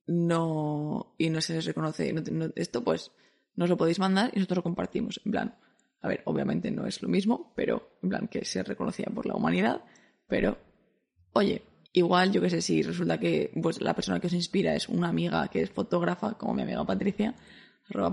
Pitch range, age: 160-220 Hz, 20-39